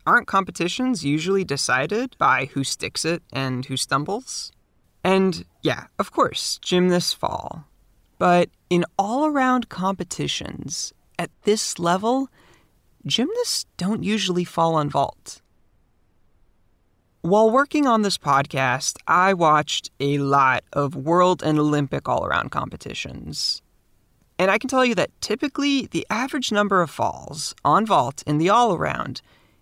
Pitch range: 150-225 Hz